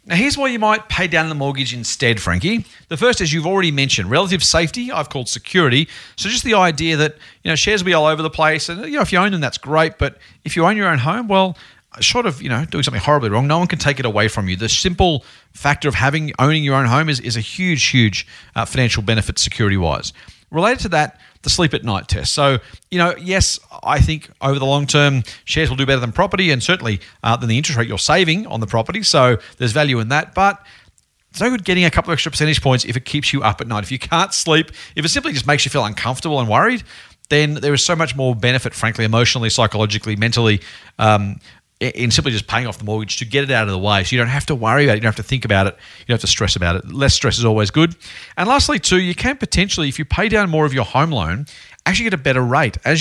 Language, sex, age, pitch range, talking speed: English, male, 40-59, 115-160 Hz, 265 wpm